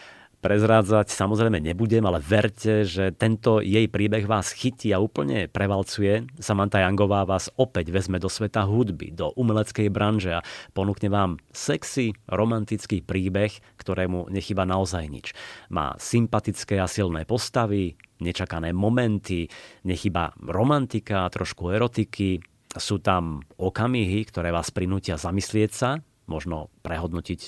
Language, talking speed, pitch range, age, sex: Slovak, 120 wpm, 90-110 Hz, 30-49, male